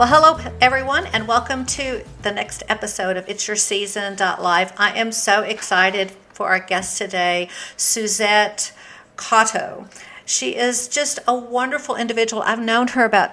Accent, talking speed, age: American, 150 wpm, 50-69